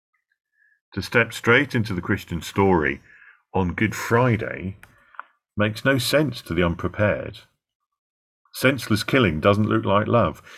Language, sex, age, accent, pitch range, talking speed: English, male, 40-59, British, 85-110 Hz, 125 wpm